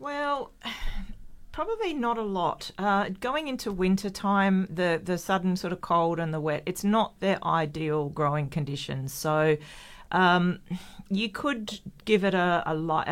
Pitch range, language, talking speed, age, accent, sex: 155-185 Hz, English, 155 wpm, 40-59, Australian, female